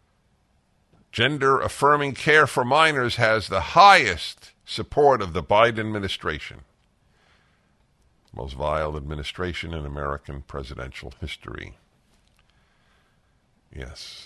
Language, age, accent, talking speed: English, 50-69, American, 85 wpm